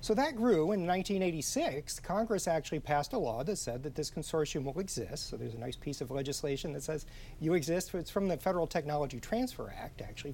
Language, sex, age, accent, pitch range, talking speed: English, male, 40-59, American, 135-185 Hz, 210 wpm